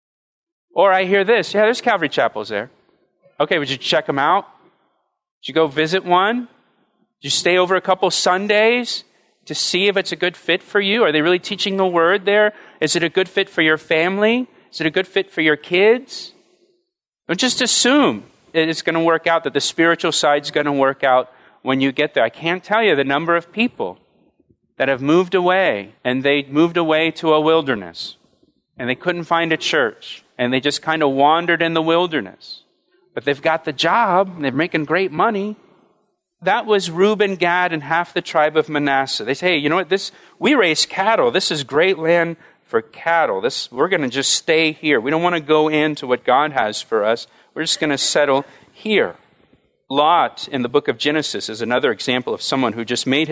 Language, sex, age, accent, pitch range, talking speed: English, male, 40-59, American, 150-195 Hz, 210 wpm